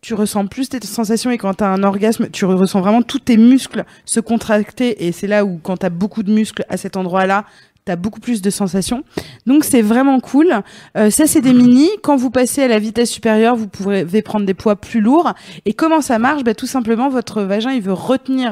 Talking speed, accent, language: 235 wpm, French, French